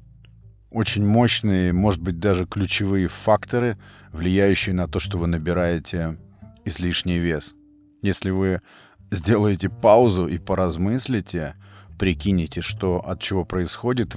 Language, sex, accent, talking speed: Russian, male, native, 110 wpm